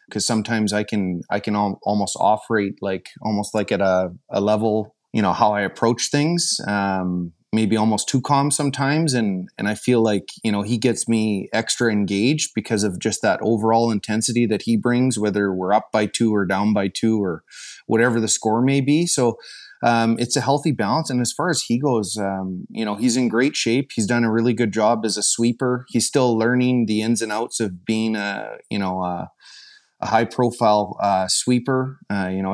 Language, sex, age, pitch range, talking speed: English, male, 30-49, 105-125 Hz, 210 wpm